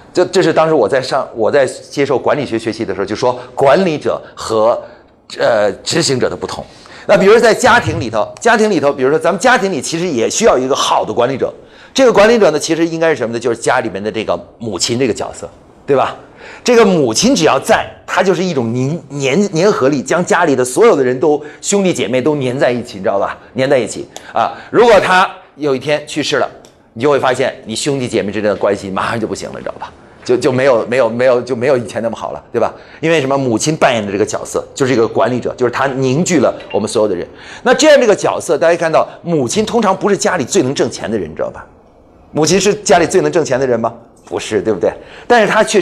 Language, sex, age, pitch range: Chinese, male, 30-49, 135-210 Hz